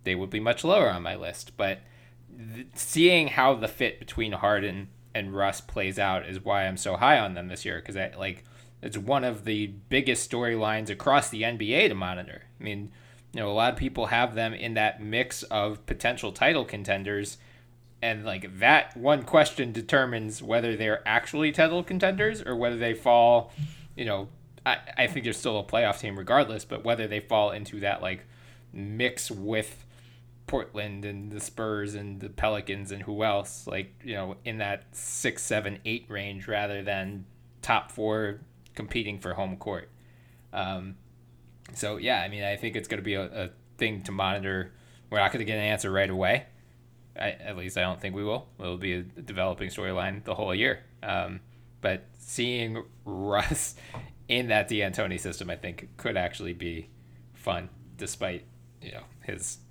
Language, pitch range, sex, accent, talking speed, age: English, 95-120 Hz, male, American, 180 wpm, 20-39